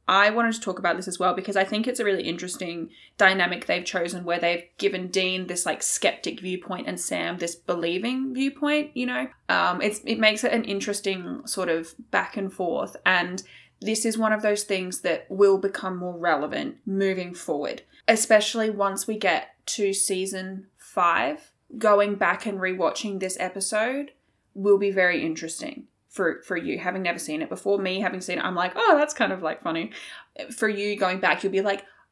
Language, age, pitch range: English, 20-39, 180-220 Hz